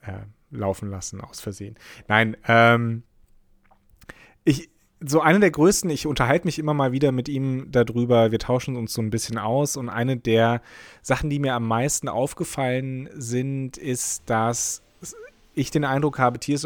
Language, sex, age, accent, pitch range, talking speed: German, male, 30-49, German, 120-155 Hz, 160 wpm